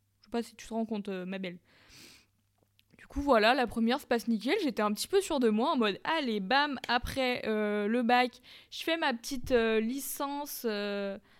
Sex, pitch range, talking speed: female, 210-255 Hz, 200 wpm